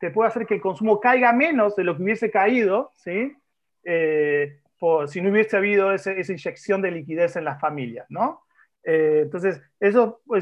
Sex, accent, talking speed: male, Argentinian, 190 wpm